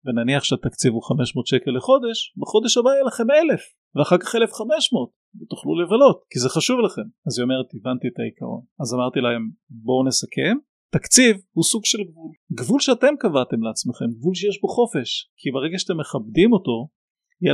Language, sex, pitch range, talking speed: Hebrew, male, 130-205 Hz, 170 wpm